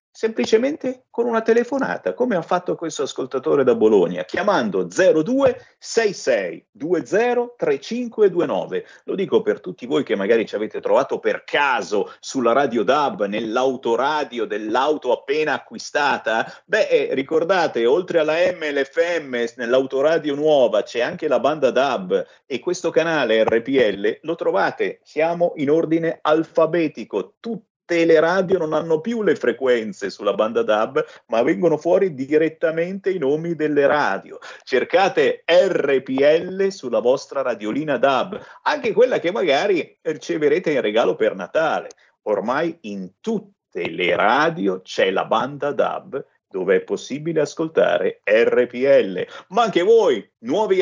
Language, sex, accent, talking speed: Italian, male, native, 125 wpm